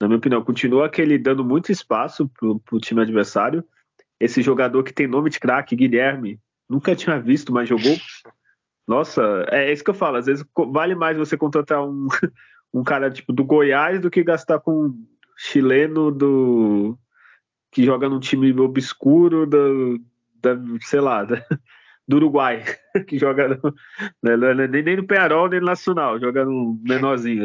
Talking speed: 165 wpm